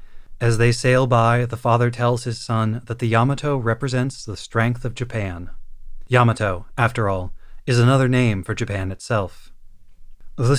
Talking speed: 155 wpm